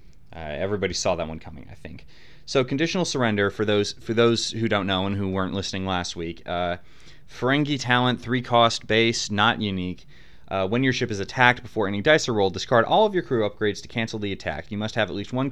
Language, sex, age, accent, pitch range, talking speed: English, male, 30-49, American, 95-130 Hz, 230 wpm